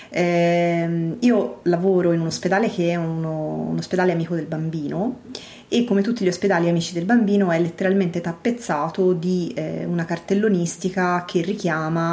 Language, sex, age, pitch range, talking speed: Italian, female, 30-49, 170-200 Hz, 150 wpm